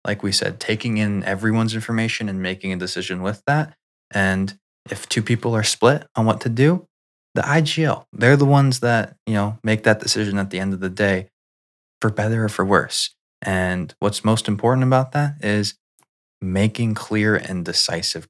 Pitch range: 95-120 Hz